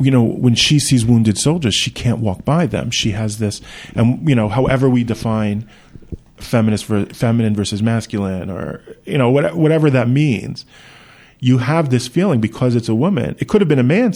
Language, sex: English, male